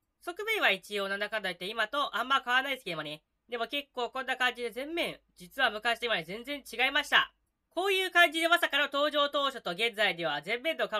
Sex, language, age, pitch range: female, Japanese, 20-39, 210-335 Hz